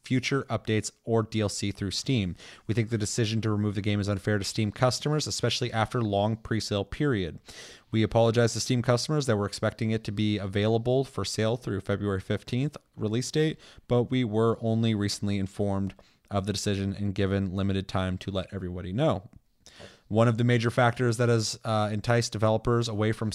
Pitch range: 100-120 Hz